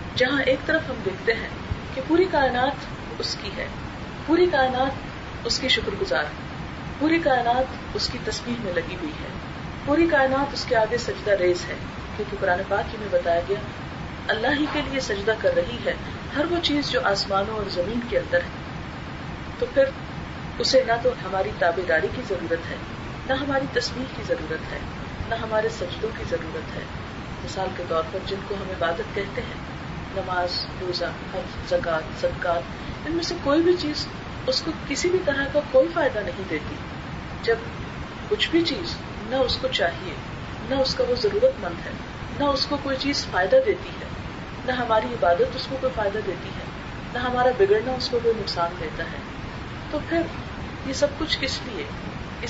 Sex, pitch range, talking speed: female, 200-330 Hz, 185 wpm